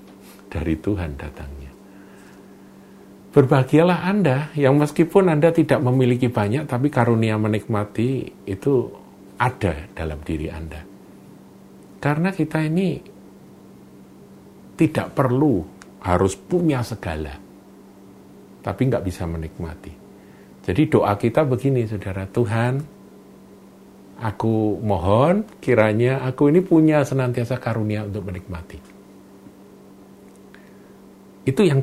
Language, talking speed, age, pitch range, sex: Indonesian, 90 wpm, 50-69, 95-130 Hz, male